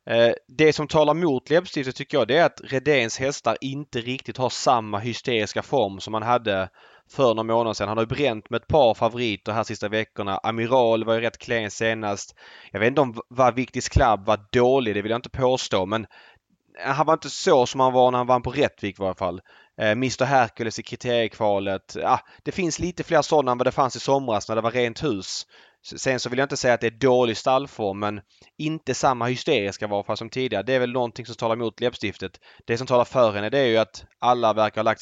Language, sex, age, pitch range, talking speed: Swedish, male, 20-39, 110-130 Hz, 225 wpm